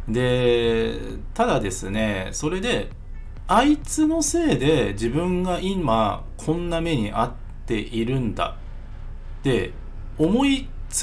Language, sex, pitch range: Japanese, male, 100-150 Hz